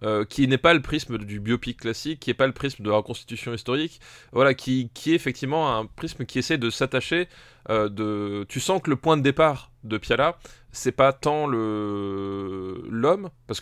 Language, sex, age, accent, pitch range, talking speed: French, male, 20-39, French, 110-140 Hz, 205 wpm